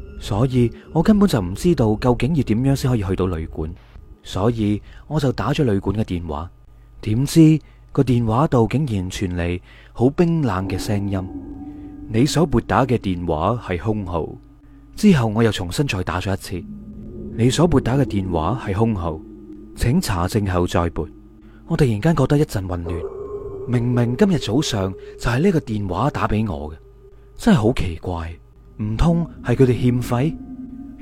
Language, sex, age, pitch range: Chinese, male, 30-49, 100-145 Hz